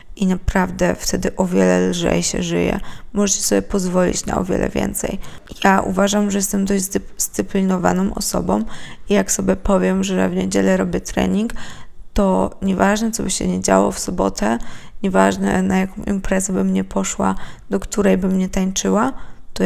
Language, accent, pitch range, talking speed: Polish, native, 175-205 Hz, 165 wpm